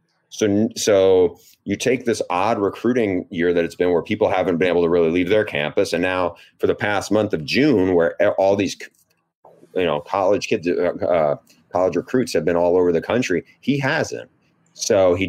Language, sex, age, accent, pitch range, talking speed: English, male, 30-49, American, 85-105 Hz, 190 wpm